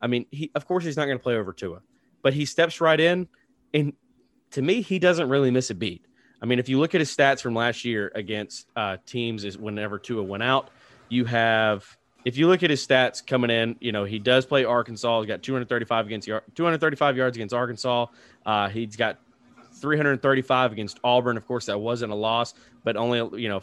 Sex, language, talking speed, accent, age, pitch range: male, English, 215 wpm, American, 30-49, 115-130 Hz